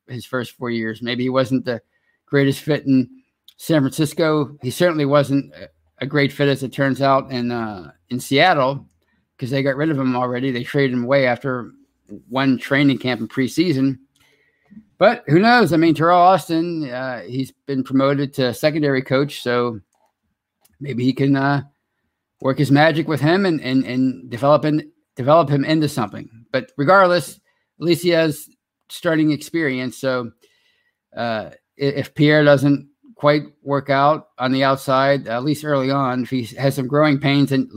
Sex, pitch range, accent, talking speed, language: male, 125-150 Hz, American, 170 wpm, English